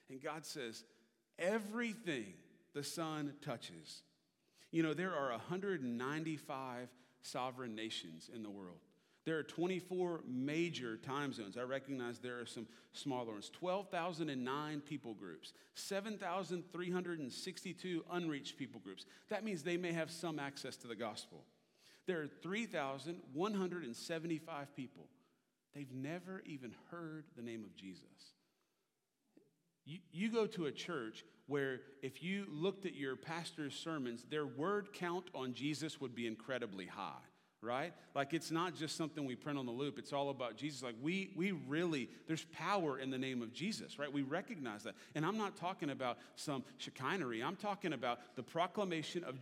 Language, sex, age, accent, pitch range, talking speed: English, male, 40-59, American, 130-175 Hz, 150 wpm